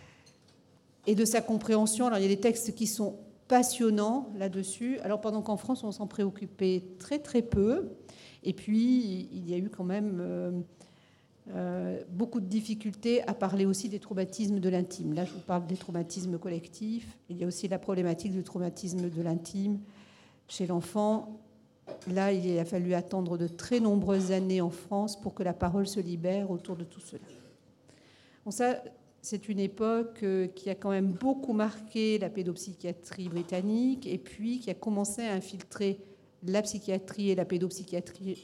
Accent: French